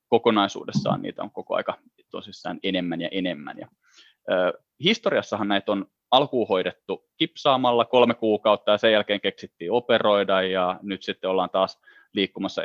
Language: Finnish